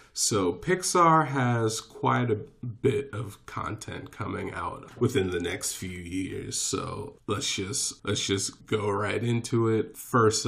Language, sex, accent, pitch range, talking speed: English, male, American, 105-130 Hz, 145 wpm